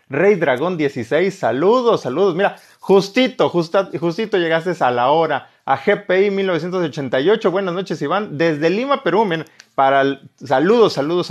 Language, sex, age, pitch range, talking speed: Spanish, male, 30-49, 130-180 Hz, 135 wpm